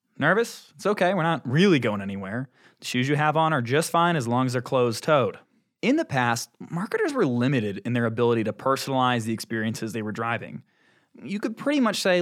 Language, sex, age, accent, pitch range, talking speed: English, male, 20-39, American, 120-185 Hz, 210 wpm